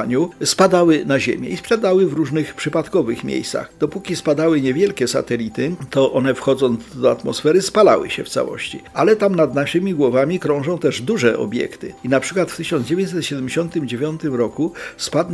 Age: 50-69